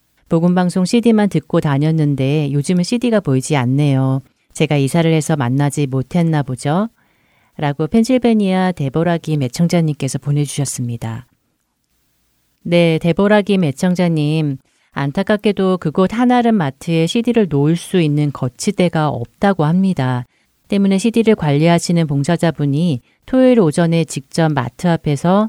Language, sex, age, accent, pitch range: Korean, female, 40-59, native, 135-185 Hz